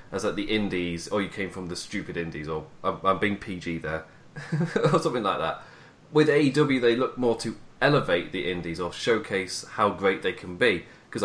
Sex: male